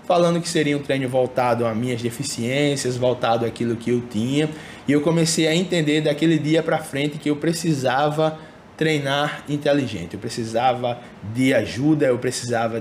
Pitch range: 125-155 Hz